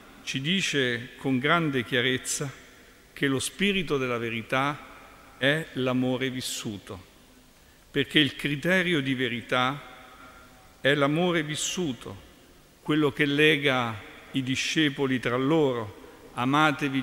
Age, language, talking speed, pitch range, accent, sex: 50-69, Italian, 100 wpm, 125-160 Hz, native, male